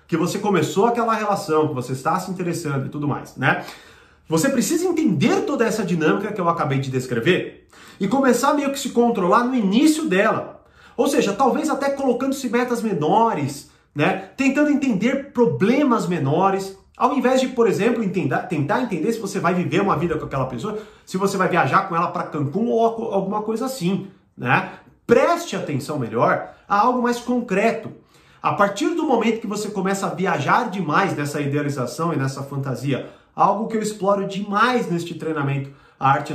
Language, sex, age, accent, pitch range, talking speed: Portuguese, male, 40-59, Brazilian, 155-230 Hz, 180 wpm